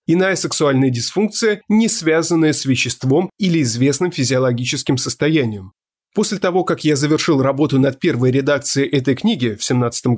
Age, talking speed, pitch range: 30-49, 140 wpm, 135-185 Hz